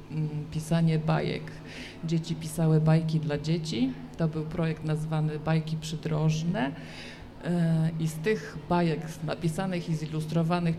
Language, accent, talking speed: Polish, native, 110 wpm